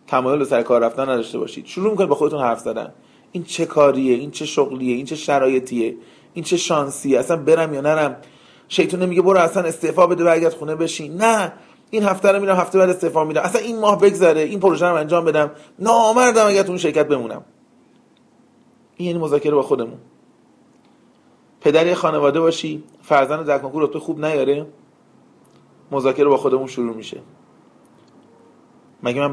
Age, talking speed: 30-49, 170 wpm